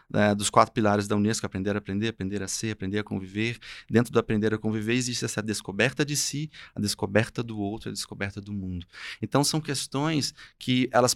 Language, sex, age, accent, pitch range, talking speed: Portuguese, male, 20-39, Brazilian, 105-125 Hz, 205 wpm